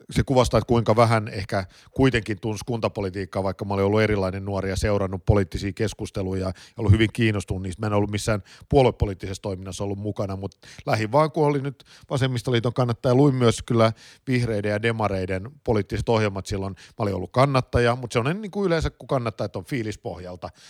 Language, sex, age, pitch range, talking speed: Finnish, male, 50-69, 100-120 Hz, 180 wpm